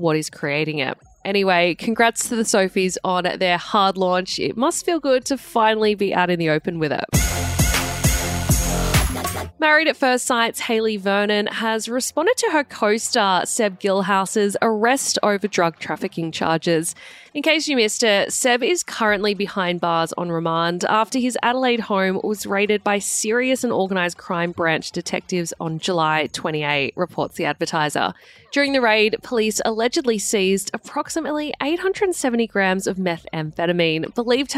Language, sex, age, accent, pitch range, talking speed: English, female, 20-39, Australian, 175-240 Hz, 155 wpm